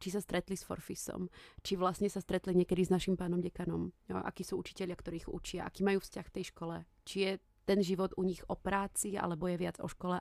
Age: 30-49